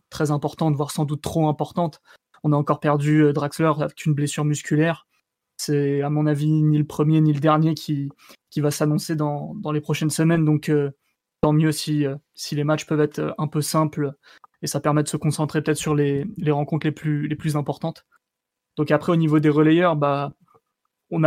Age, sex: 20-39, male